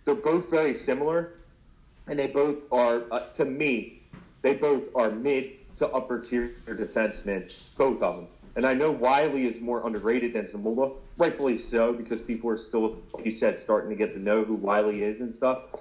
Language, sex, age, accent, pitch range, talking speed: English, male, 30-49, American, 110-145 Hz, 185 wpm